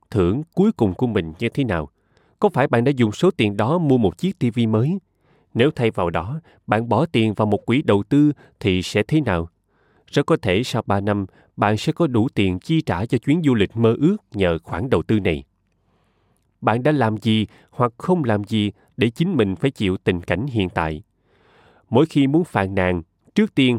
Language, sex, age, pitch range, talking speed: Vietnamese, male, 20-39, 95-140 Hz, 215 wpm